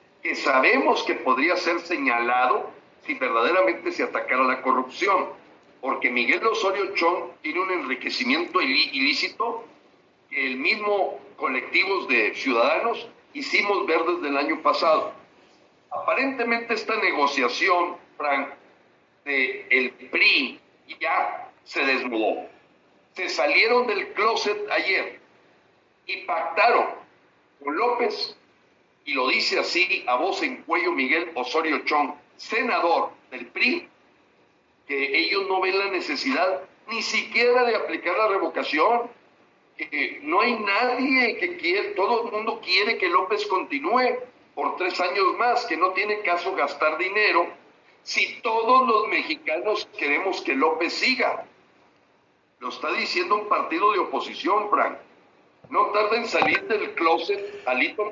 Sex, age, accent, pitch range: male, 60-79, Mexican, 210-355 Hz